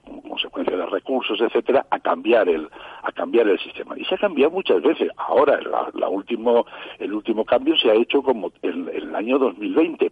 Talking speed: 200 wpm